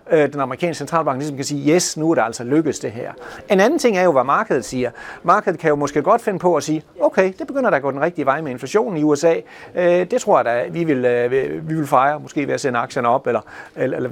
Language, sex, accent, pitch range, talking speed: Danish, male, native, 130-180 Hz, 255 wpm